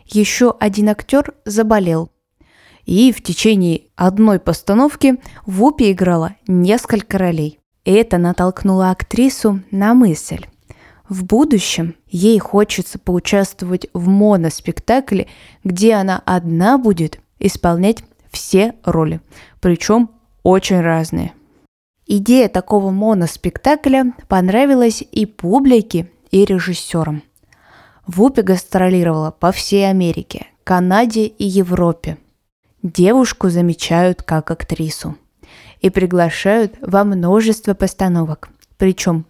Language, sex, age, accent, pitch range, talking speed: Russian, female, 20-39, native, 175-220 Hz, 95 wpm